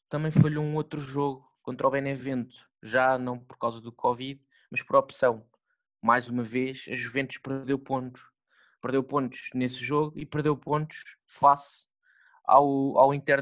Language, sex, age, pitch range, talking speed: Portuguese, male, 20-39, 130-160 Hz, 155 wpm